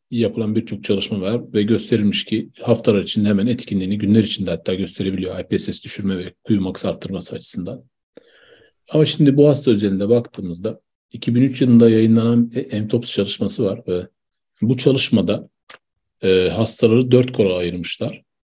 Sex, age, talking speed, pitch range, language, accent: male, 40-59, 130 wpm, 105-125 Hz, Turkish, native